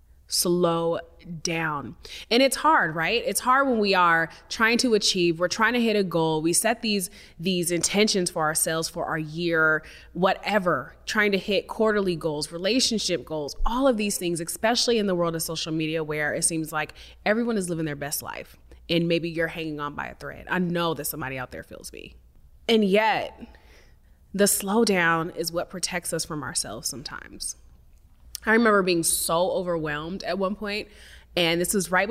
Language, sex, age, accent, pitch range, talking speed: English, female, 30-49, American, 160-195 Hz, 185 wpm